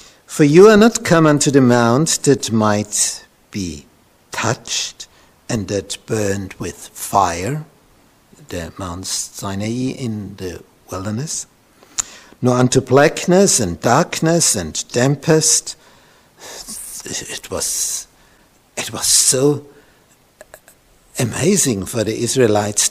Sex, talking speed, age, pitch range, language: male, 100 wpm, 60-79, 105-145 Hz, English